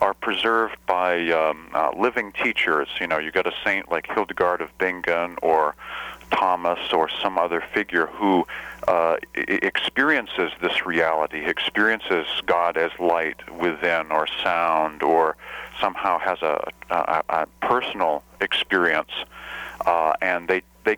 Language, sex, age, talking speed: English, male, 40-59, 135 wpm